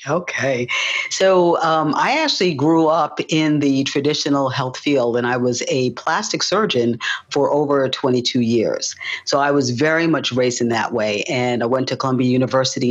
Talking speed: 170 wpm